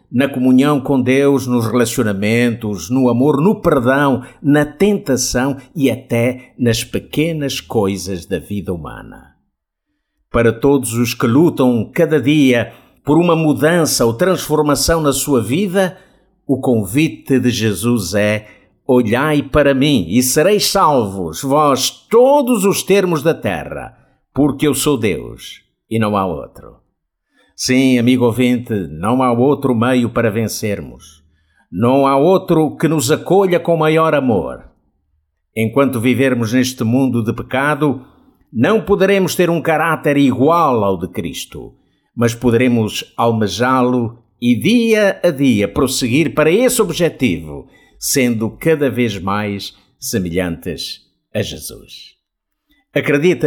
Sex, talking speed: male, 125 wpm